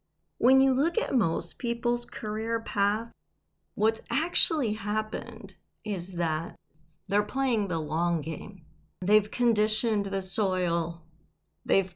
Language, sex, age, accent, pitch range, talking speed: English, female, 40-59, American, 185-240 Hz, 115 wpm